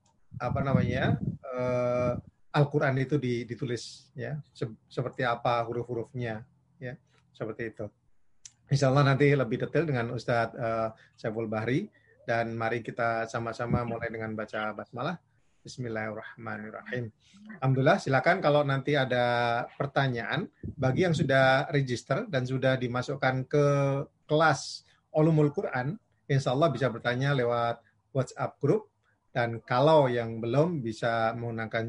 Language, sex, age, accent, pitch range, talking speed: Indonesian, male, 30-49, native, 115-140 Hz, 110 wpm